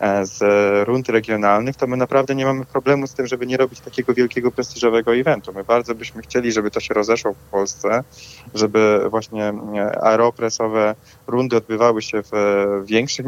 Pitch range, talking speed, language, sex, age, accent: 105-120 Hz, 165 wpm, Polish, male, 20-39, native